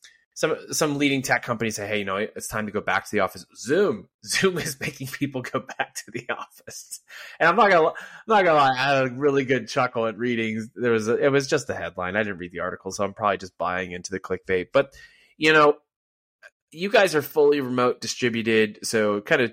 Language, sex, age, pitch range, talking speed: English, male, 20-39, 95-120 Hz, 235 wpm